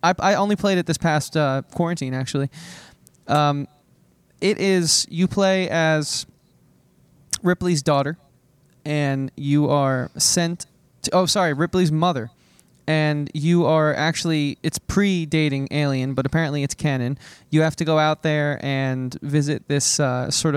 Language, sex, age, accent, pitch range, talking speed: English, male, 20-39, American, 135-160 Hz, 145 wpm